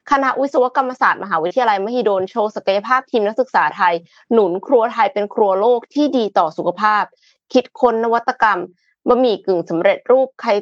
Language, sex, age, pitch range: Thai, female, 20-39, 190-245 Hz